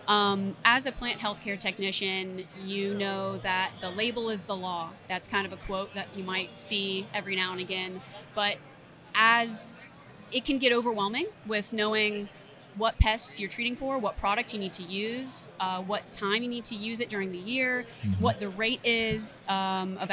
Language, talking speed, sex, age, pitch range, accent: English, 190 wpm, female, 30-49, 190-220 Hz, American